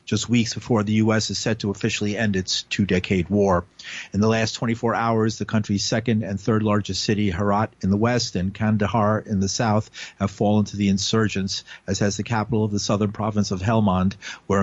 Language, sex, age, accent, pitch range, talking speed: English, male, 50-69, American, 100-120 Hz, 205 wpm